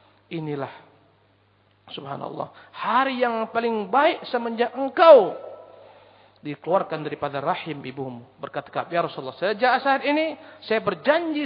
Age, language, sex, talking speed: 50-69, Indonesian, male, 105 wpm